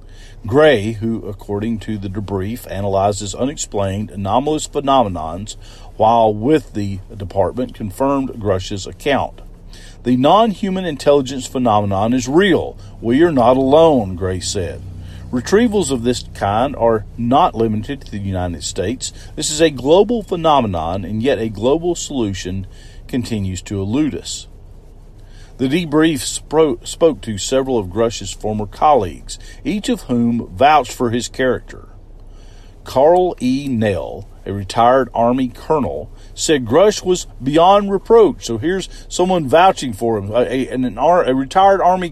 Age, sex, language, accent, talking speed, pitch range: 40-59, male, English, American, 135 wpm, 100-140 Hz